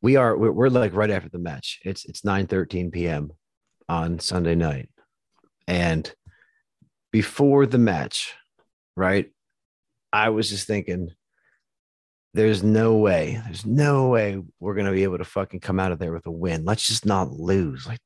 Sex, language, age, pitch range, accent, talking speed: male, English, 40-59, 85-110 Hz, American, 165 wpm